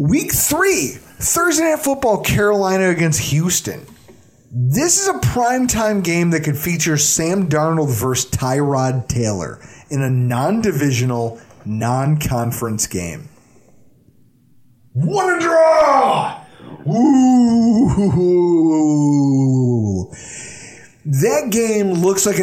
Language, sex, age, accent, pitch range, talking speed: English, male, 30-49, American, 130-205 Hz, 90 wpm